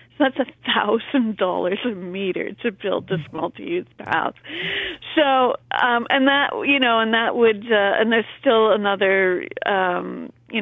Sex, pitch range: female, 185-240 Hz